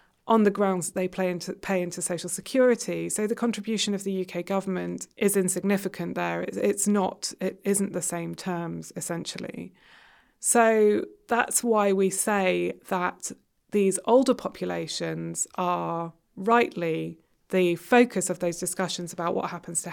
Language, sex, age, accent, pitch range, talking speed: English, female, 20-39, British, 175-215 Hz, 140 wpm